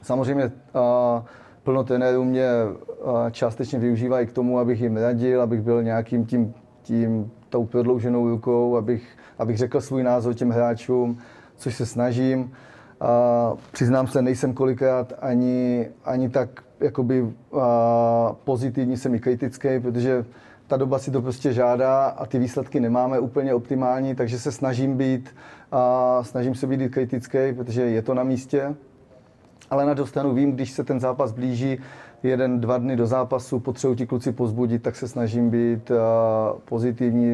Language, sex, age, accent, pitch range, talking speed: Czech, male, 20-39, native, 115-130 Hz, 145 wpm